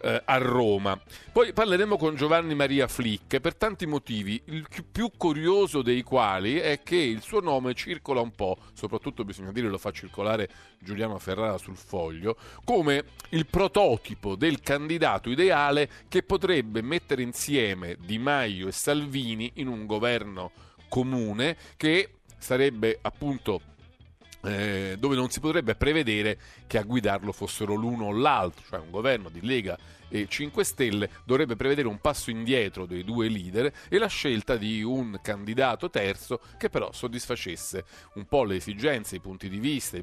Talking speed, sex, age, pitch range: 155 wpm, male, 40-59, 100-140 Hz